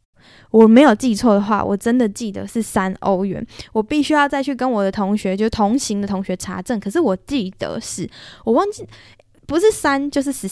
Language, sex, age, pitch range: Chinese, female, 10-29, 195-240 Hz